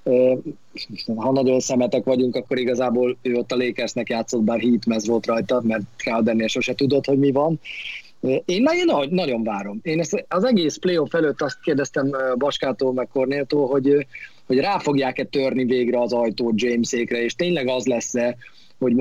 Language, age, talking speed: Hungarian, 30-49, 160 wpm